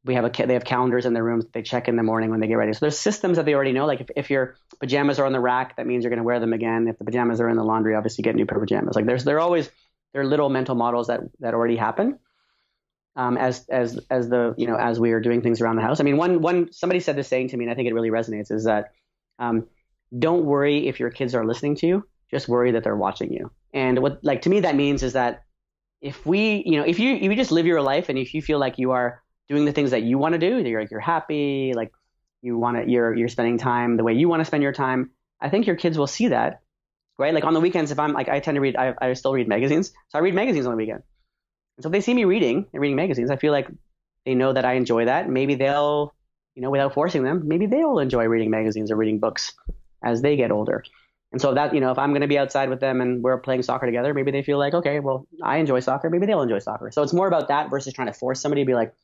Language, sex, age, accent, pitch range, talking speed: English, male, 30-49, American, 120-150 Hz, 295 wpm